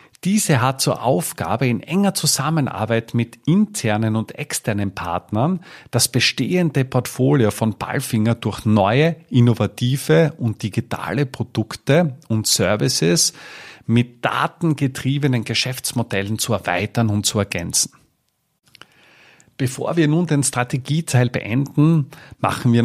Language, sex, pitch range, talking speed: German, male, 115-150 Hz, 110 wpm